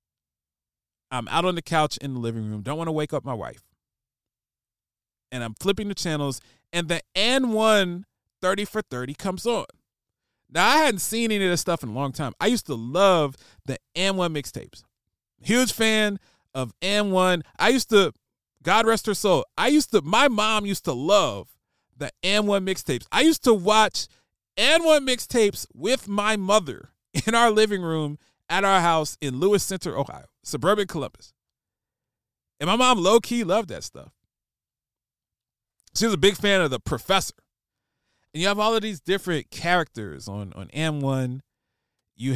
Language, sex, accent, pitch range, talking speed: English, male, American, 130-200 Hz, 170 wpm